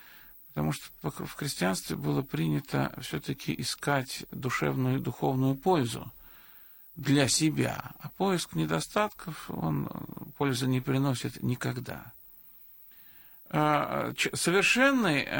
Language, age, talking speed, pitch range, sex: Russian, 50-69, 95 wpm, 125-165 Hz, male